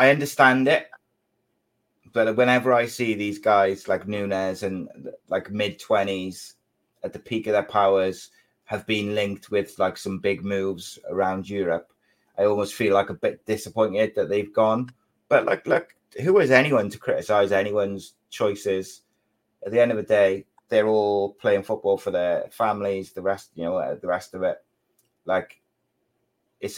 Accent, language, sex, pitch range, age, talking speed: British, English, male, 95-110 Hz, 30-49, 165 wpm